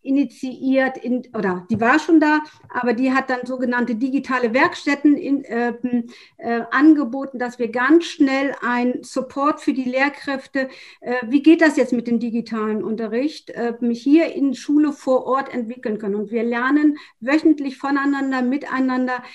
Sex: female